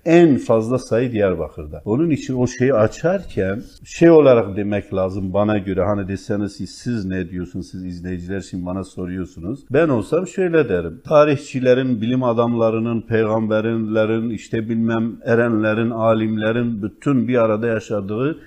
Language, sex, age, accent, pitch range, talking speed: Turkish, male, 50-69, native, 105-145 Hz, 135 wpm